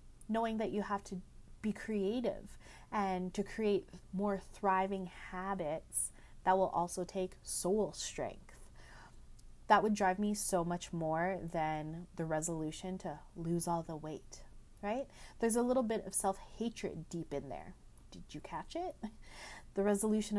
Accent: American